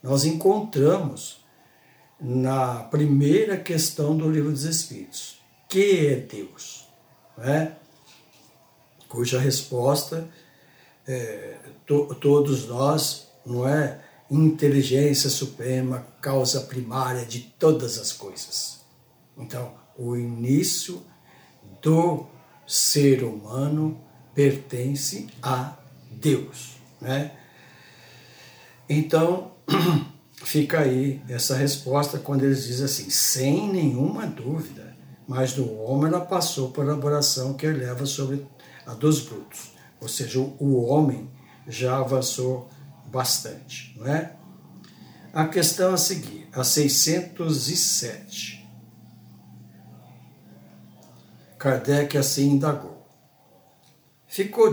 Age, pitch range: 60-79, 130-155 Hz